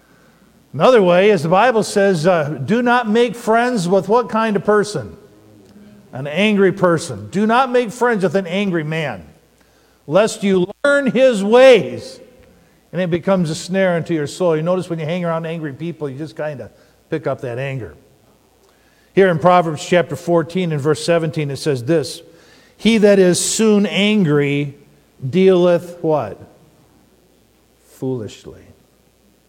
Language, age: English, 50-69